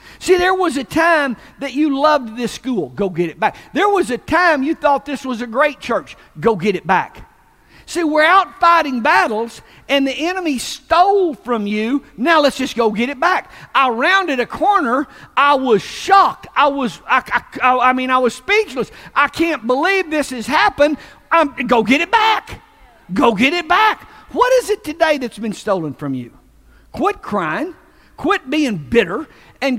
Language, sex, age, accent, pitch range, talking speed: English, male, 50-69, American, 200-310 Hz, 185 wpm